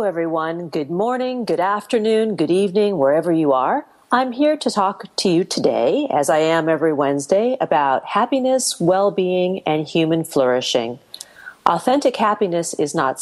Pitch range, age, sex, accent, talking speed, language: 160-230 Hz, 40-59, female, American, 150 wpm, English